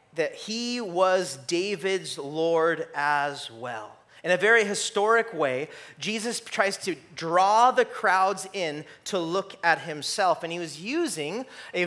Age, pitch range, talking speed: 30-49, 190-245 Hz, 140 wpm